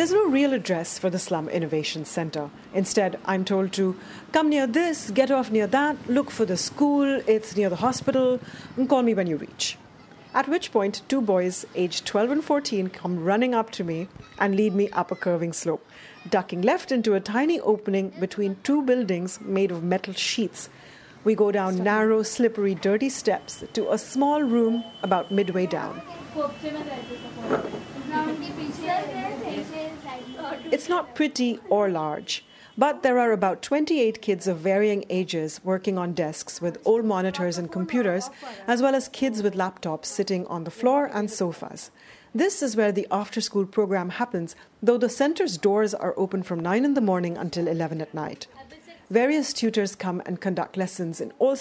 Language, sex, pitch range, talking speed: English, female, 185-260 Hz, 170 wpm